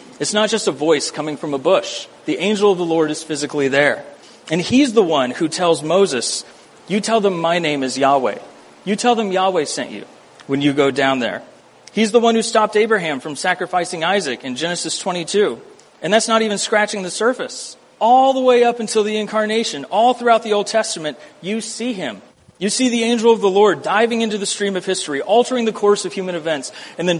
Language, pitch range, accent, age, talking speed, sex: English, 160-215 Hz, American, 40-59, 215 wpm, male